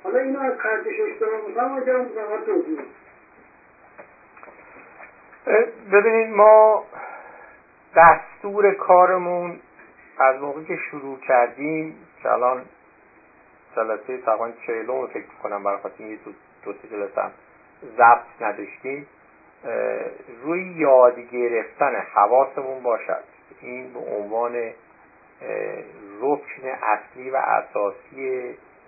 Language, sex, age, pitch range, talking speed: Persian, male, 60-79, 130-190 Hz, 80 wpm